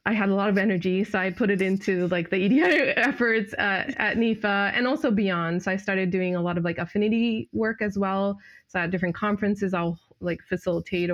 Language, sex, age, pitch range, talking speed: English, female, 20-39, 170-200 Hz, 215 wpm